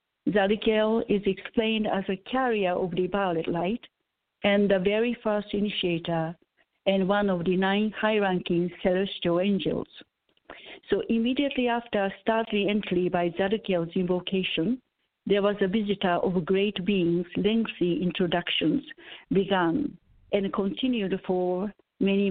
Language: English